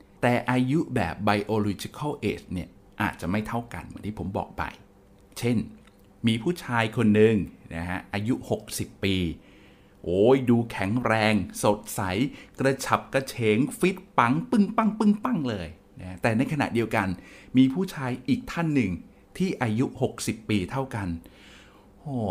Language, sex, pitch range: Thai, male, 100-135 Hz